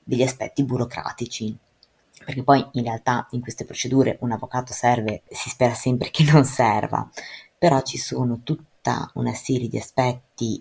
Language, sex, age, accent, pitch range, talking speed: Italian, female, 20-39, native, 120-140 Hz, 155 wpm